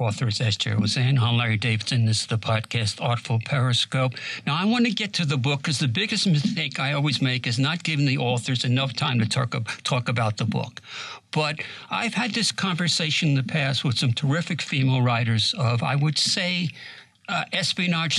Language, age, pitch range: English, 60-79, 130-170 Hz